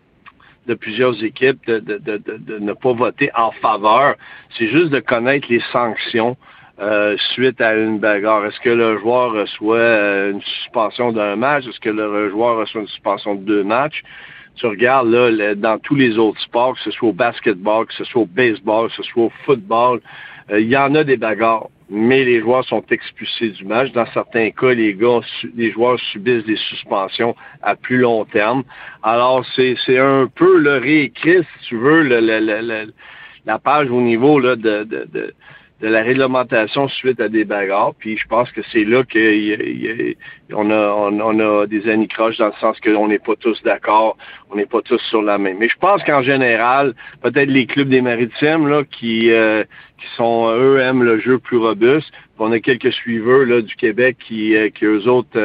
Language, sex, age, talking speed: French, male, 60-79, 200 wpm